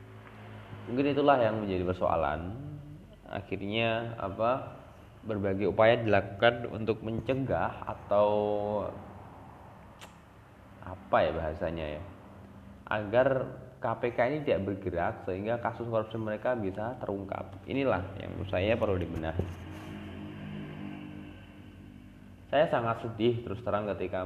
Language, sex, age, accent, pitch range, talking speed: Indonesian, male, 20-39, native, 95-110 Hz, 100 wpm